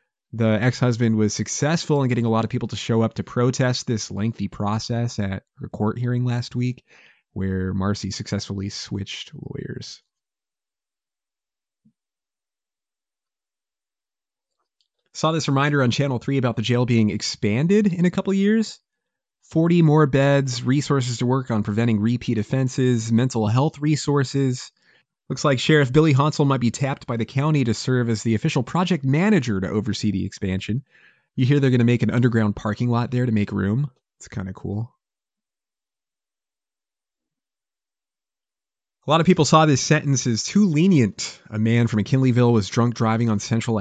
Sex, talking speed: male, 160 wpm